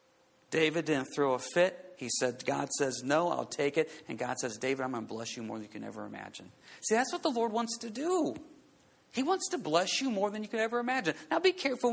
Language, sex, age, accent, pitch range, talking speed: English, male, 40-59, American, 135-190 Hz, 250 wpm